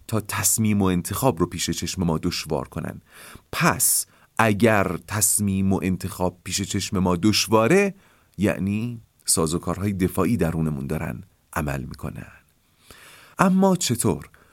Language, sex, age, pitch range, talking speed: Persian, male, 40-59, 90-120 Hz, 125 wpm